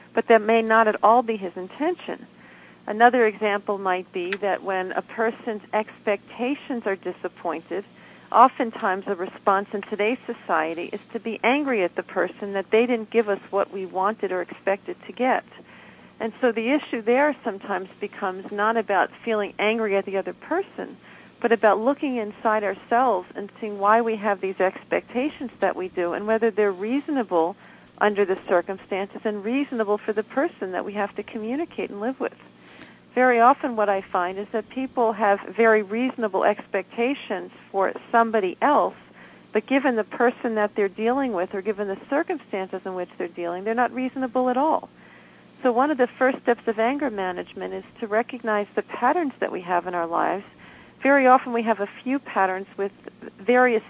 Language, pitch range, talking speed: English, 195-245 Hz, 180 wpm